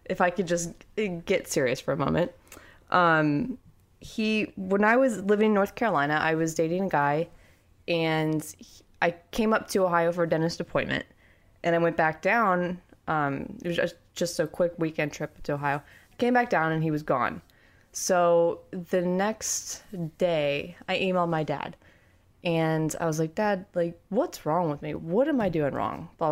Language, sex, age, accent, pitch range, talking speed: English, female, 20-39, American, 155-185 Hz, 185 wpm